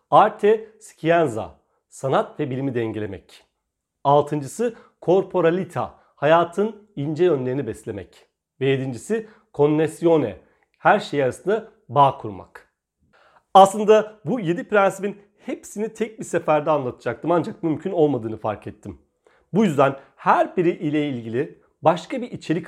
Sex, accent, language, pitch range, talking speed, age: male, native, Turkish, 125-200 Hz, 115 wpm, 40-59